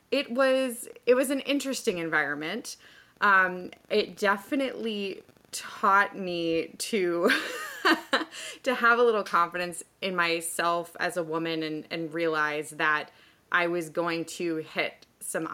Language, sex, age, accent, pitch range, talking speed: English, female, 20-39, American, 165-195 Hz, 125 wpm